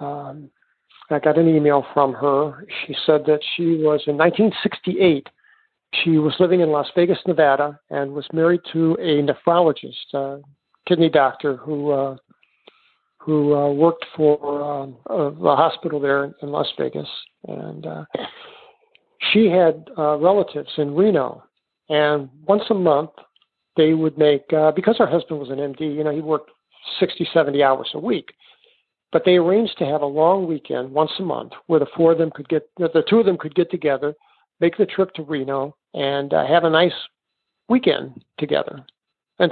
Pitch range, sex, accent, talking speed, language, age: 145-180 Hz, male, American, 170 wpm, English, 50-69